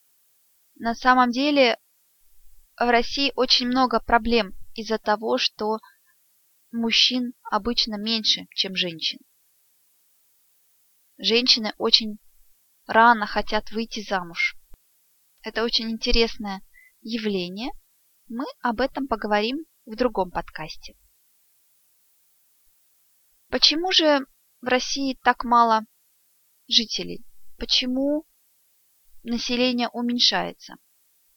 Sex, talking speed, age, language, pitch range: female, 80 wpm, 20-39, Russian, 215-255 Hz